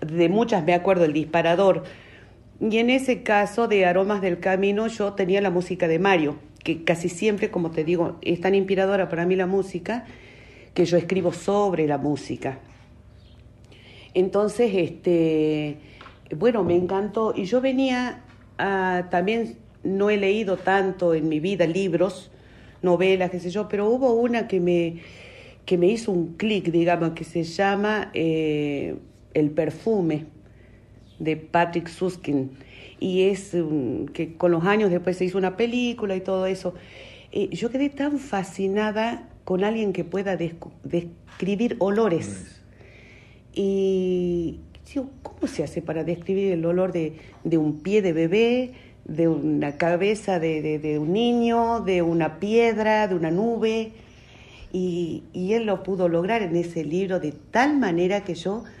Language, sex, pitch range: Spanish, female, 160-200 Hz